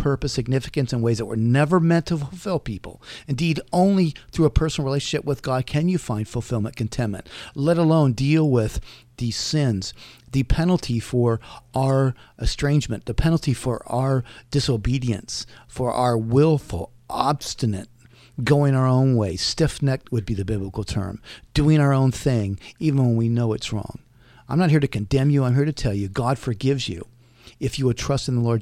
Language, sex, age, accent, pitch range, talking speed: English, male, 50-69, American, 120-155 Hz, 180 wpm